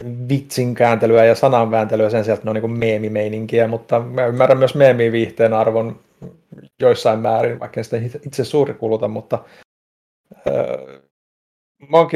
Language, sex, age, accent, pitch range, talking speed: Finnish, male, 30-49, native, 105-120 Hz, 125 wpm